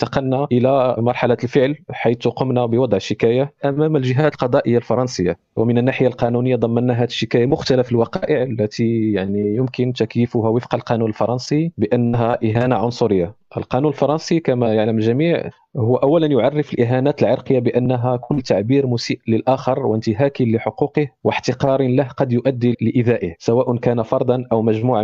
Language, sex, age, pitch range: Arabic, male, 40-59, 115-140 Hz